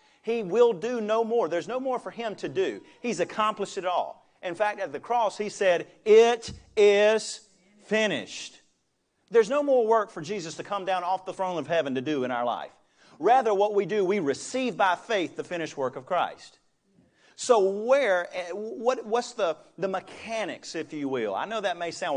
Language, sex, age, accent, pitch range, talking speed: English, male, 40-59, American, 165-225 Hz, 200 wpm